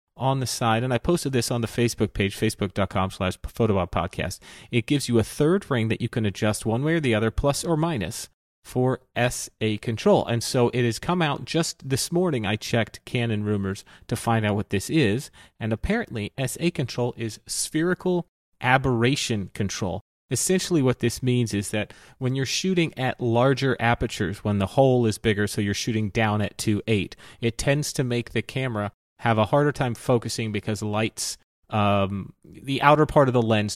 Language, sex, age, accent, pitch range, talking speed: English, male, 30-49, American, 105-130 Hz, 185 wpm